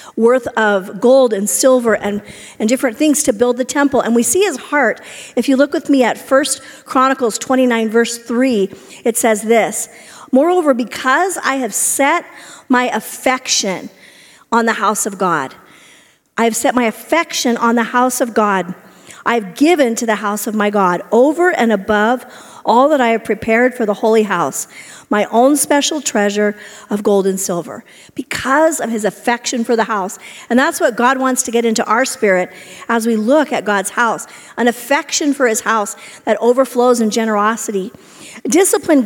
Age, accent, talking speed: 50-69, American, 175 wpm